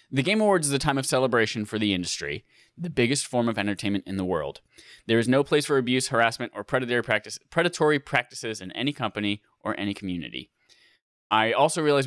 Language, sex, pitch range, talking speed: English, male, 100-140 Hz, 195 wpm